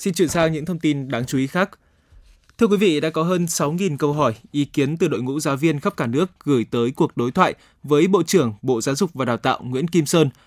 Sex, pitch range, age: male, 130-170 Hz, 20-39